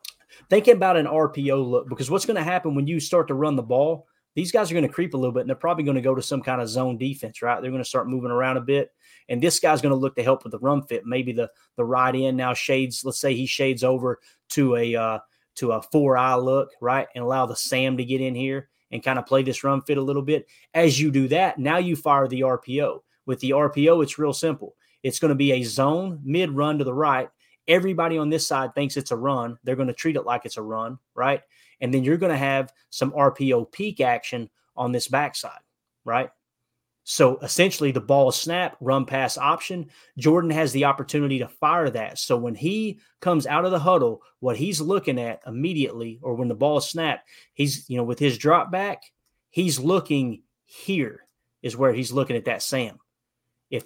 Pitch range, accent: 130-160 Hz, American